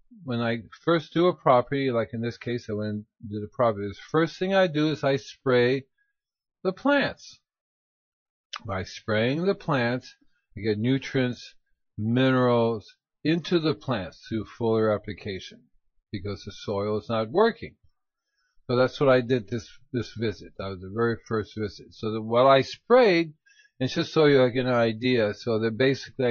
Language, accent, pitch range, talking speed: English, American, 110-135 Hz, 175 wpm